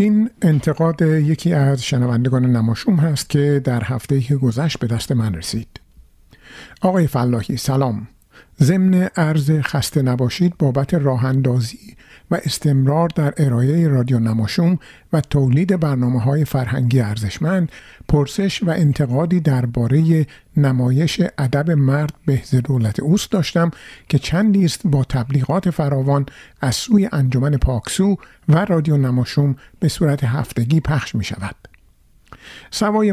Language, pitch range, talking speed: Persian, 130-170 Hz, 115 wpm